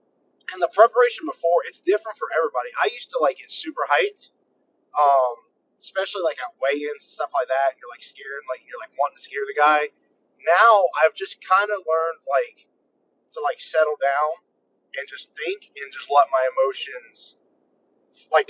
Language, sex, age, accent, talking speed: English, male, 20-39, American, 180 wpm